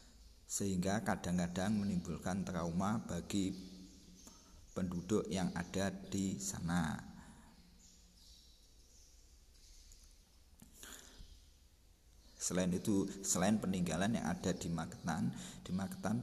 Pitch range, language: 80-95 Hz, Indonesian